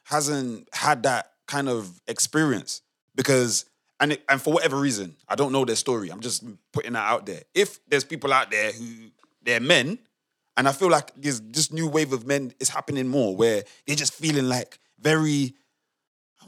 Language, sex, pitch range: English, male, 125-155 Hz